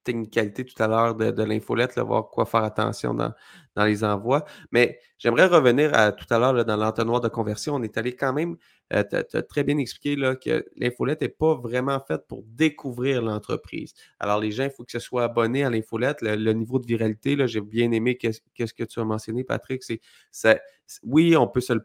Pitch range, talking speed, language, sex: 110-135 Hz, 210 wpm, French, male